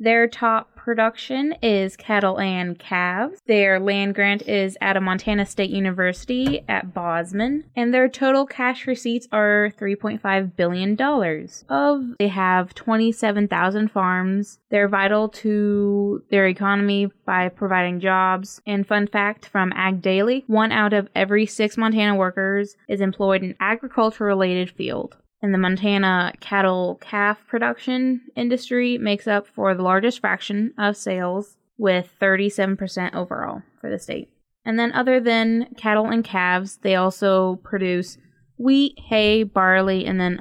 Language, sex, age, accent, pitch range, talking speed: English, female, 20-39, American, 190-225 Hz, 140 wpm